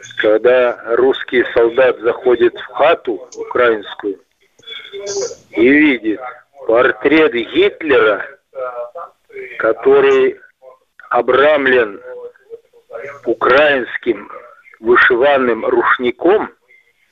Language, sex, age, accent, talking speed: Russian, male, 50-69, native, 55 wpm